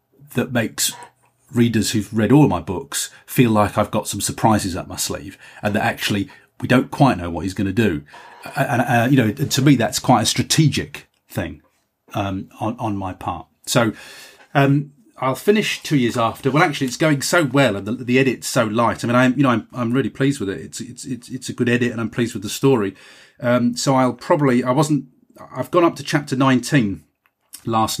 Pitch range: 105-130 Hz